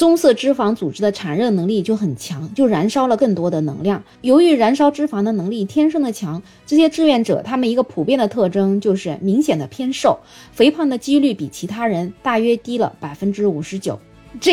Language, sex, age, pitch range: Chinese, female, 20-39, 190-265 Hz